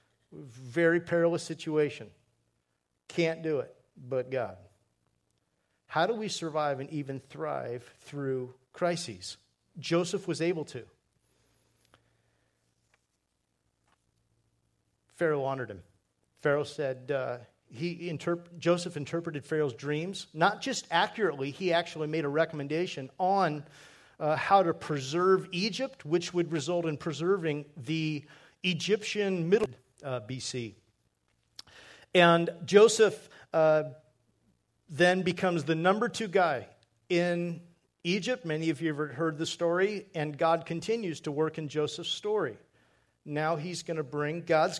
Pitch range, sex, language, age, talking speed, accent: 135-175 Hz, male, English, 50-69, 120 wpm, American